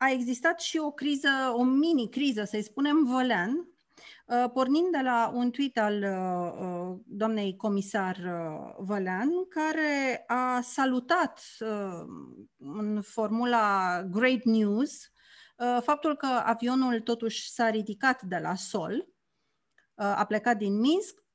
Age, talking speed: 30-49, 130 wpm